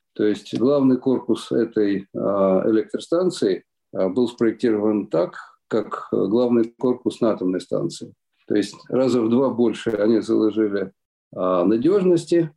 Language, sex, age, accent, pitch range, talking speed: Ukrainian, male, 50-69, native, 110-130 Hz, 115 wpm